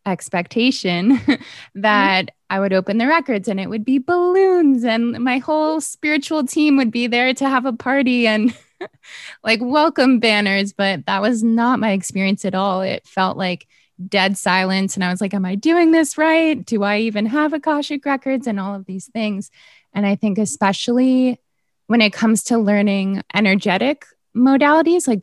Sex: female